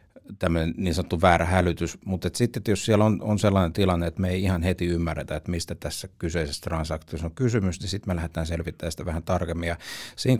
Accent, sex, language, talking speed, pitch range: native, male, Finnish, 215 wpm, 80-95 Hz